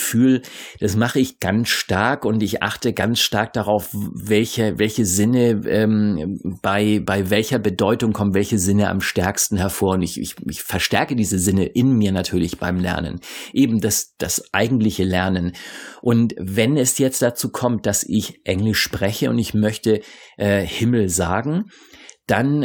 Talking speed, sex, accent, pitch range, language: 155 wpm, male, German, 100-120 Hz, German